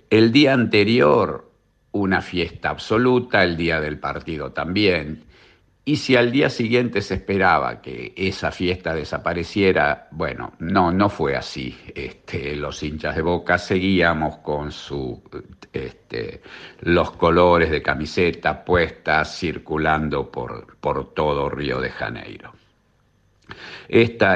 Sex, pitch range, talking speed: male, 80-115 Hz, 115 wpm